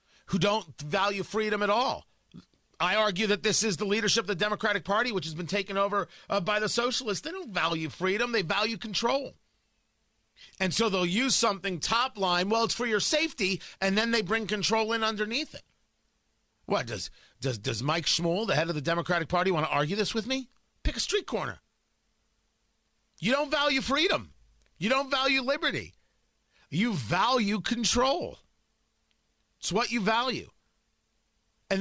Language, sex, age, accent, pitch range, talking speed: English, male, 40-59, American, 180-235 Hz, 170 wpm